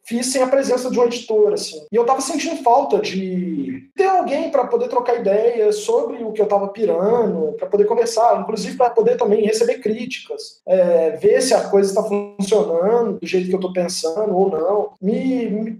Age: 20-39